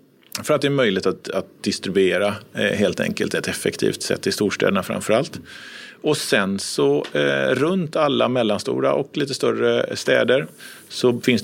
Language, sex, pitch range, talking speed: Swedish, male, 100-120 Hz, 165 wpm